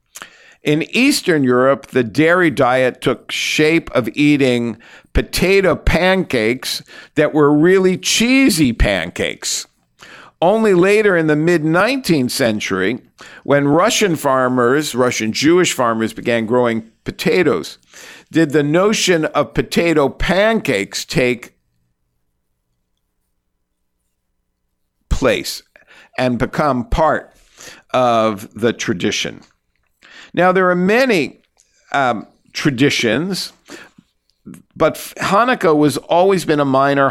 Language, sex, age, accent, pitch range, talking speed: English, male, 50-69, American, 110-155 Hz, 95 wpm